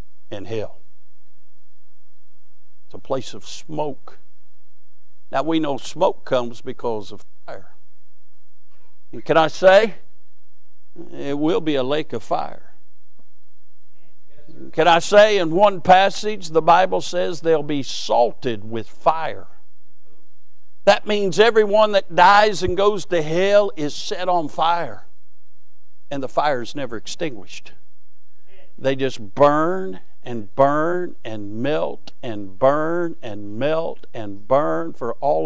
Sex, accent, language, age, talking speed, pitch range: male, American, English, 60-79, 125 wpm, 100-170 Hz